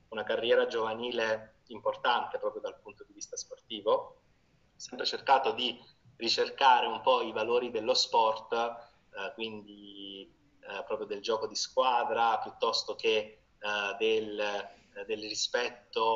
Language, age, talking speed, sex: Italian, 20-39, 125 wpm, male